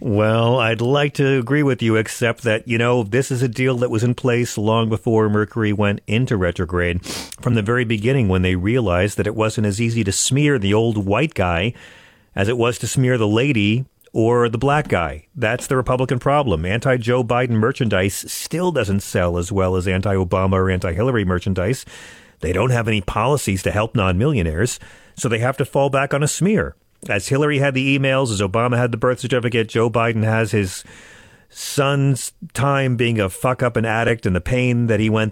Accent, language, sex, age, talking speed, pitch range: American, English, male, 40-59, 200 wpm, 105-130 Hz